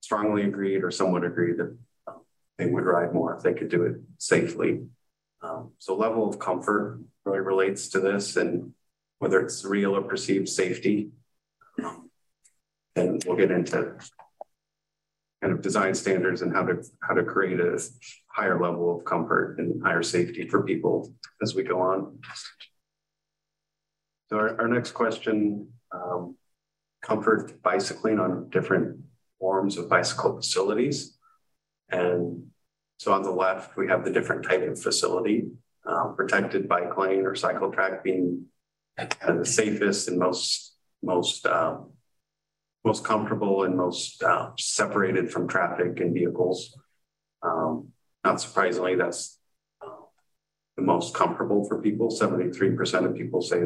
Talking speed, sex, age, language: 140 wpm, male, 40-59, English